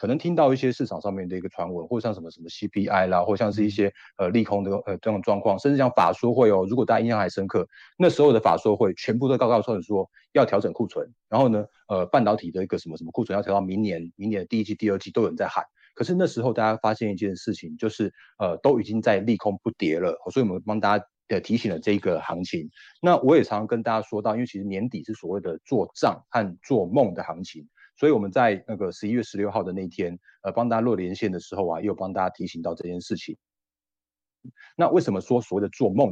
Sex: male